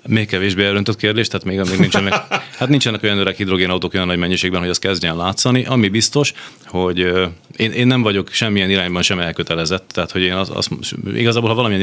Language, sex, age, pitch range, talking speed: Hungarian, male, 30-49, 85-100 Hz, 205 wpm